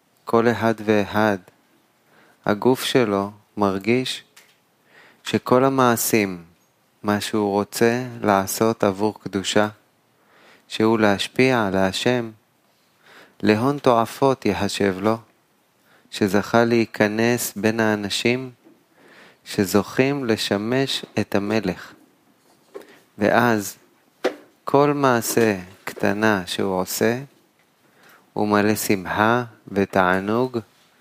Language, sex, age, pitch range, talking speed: Hebrew, male, 30-49, 100-120 Hz, 75 wpm